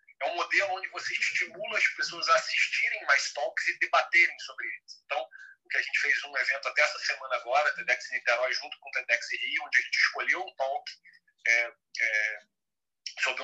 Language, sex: Portuguese, male